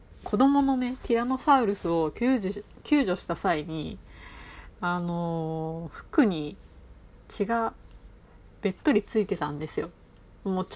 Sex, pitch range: female, 150-205 Hz